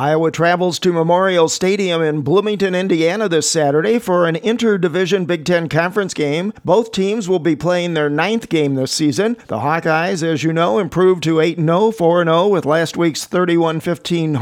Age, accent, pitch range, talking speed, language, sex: 50-69, American, 155-185 Hz, 165 wpm, English, male